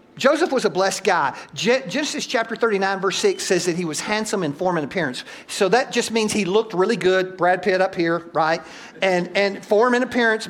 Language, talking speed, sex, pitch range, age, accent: English, 210 wpm, male, 185-265 Hz, 50-69, American